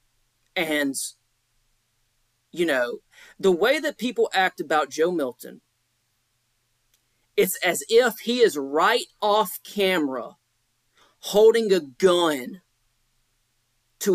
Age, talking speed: 40-59, 100 wpm